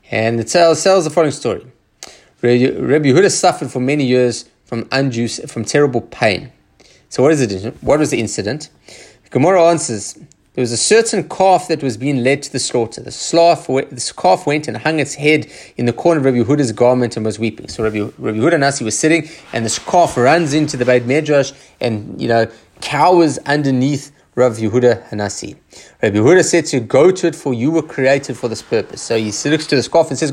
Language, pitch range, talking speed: English, 115-155 Hz, 210 wpm